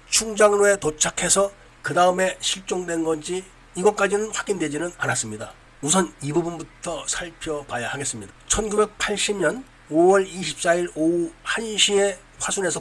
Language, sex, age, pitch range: Korean, male, 40-59, 145-190 Hz